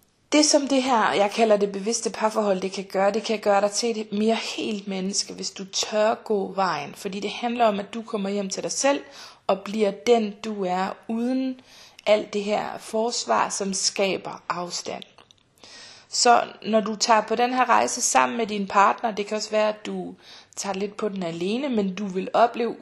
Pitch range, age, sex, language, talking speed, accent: 190-225 Hz, 30-49, female, Danish, 200 wpm, native